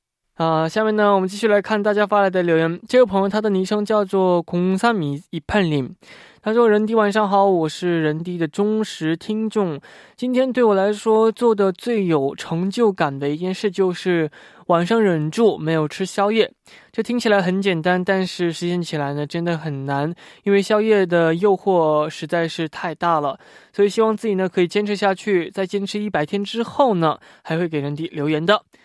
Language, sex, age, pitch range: Korean, male, 20-39, 160-210 Hz